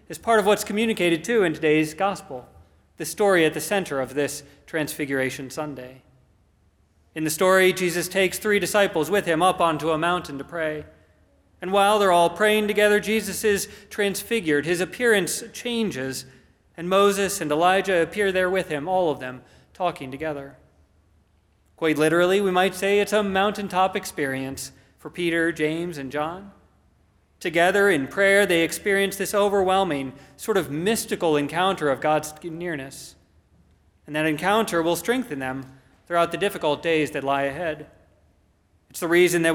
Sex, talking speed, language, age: male, 155 wpm, English, 40-59